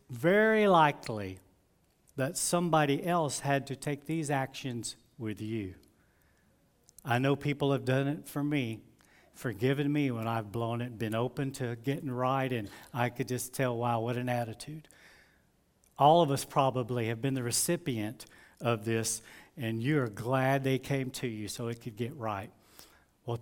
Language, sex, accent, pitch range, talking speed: English, male, American, 120-160 Hz, 165 wpm